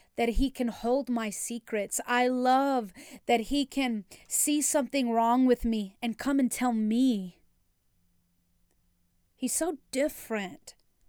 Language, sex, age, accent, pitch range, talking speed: English, female, 30-49, American, 220-275 Hz, 130 wpm